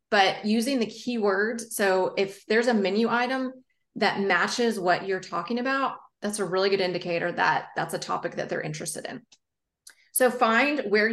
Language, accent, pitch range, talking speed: English, American, 185-235 Hz, 175 wpm